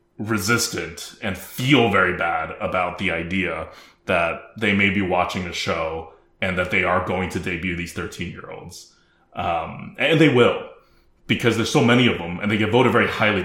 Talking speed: 185 wpm